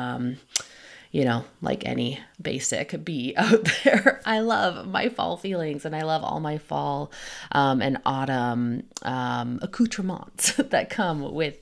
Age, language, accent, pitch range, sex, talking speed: 20-39, English, American, 130-195 Hz, female, 145 wpm